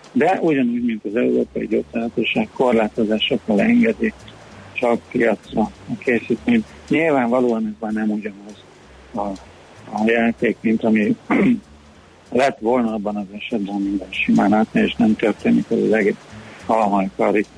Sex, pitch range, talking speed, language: male, 110-130 Hz, 125 wpm, Hungarian